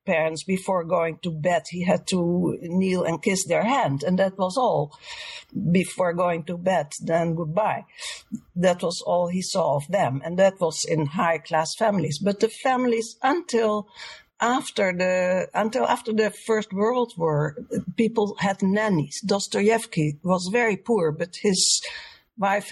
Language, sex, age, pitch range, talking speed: English, female, 60-79, 165-215 Hz, 150 wpm